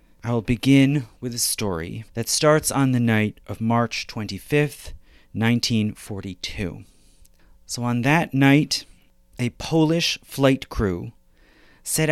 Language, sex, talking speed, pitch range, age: English, male, 115 wpm, 105-140 Hz, 30-49